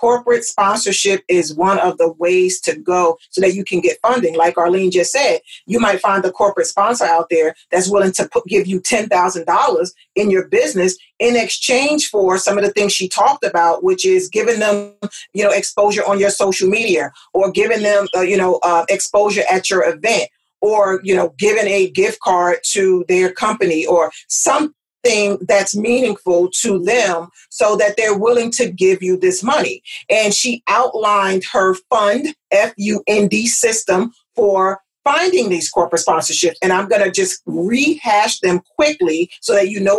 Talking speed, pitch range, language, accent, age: 175 wpm, 185-235 Hz, English, American, 40-59